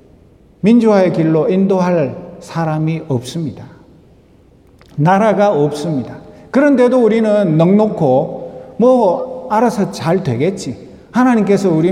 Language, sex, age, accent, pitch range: Korean, male, 50-69, native, 175-245 Hz